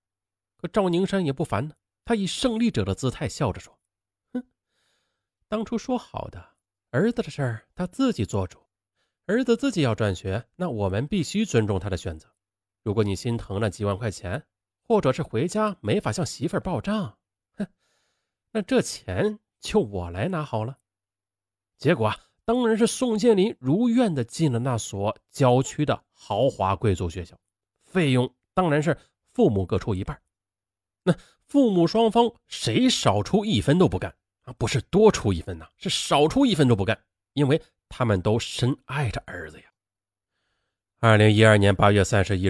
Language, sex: Chinese, male